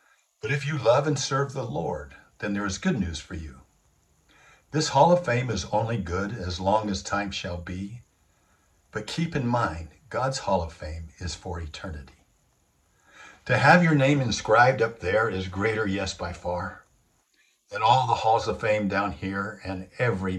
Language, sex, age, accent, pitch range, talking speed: English, male, 60-79, American, 90-110 Hz, 180 wpm